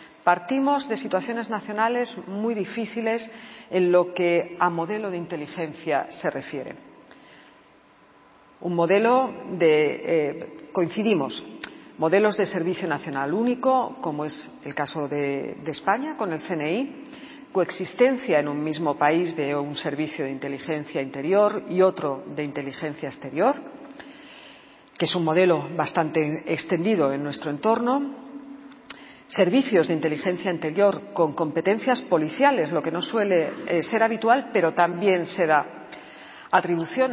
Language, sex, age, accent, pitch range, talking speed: Spanish, female, 40-59, Spanish, 155-220 Hz, 125 wpm